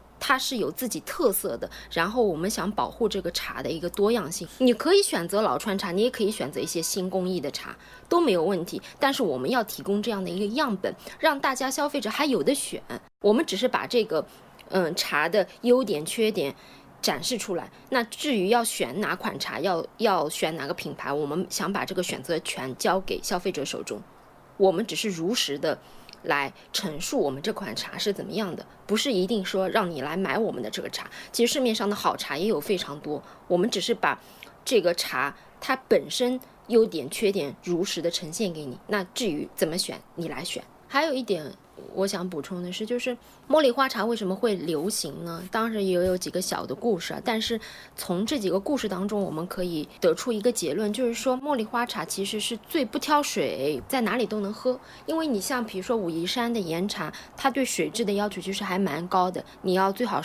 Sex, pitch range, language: female, 185-245 Hz, Chinese